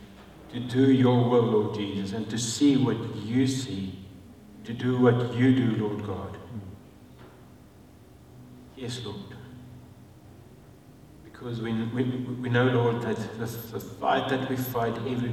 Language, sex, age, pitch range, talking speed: English, male, 60-79, 100-125 Hz, 135 wpm